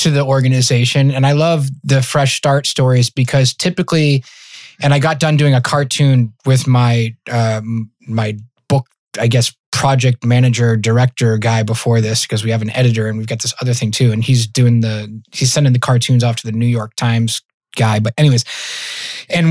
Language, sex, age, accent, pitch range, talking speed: English, male, 20-39, American, 125-165 Hz, 190 wpm